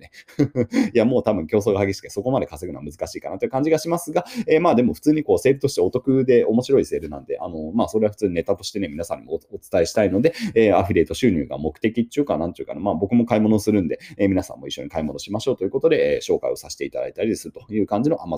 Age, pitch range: 30-49, 110-170 Hz